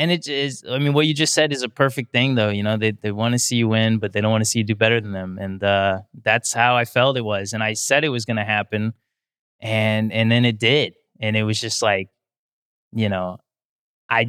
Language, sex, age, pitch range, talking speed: English, male, 20-39, 110-145 Hz, 265 wpm